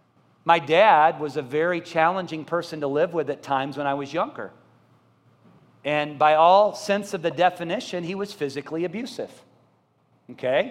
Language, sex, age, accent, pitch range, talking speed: English, male, 40-59, American, 160-220 Hz, 155 wpm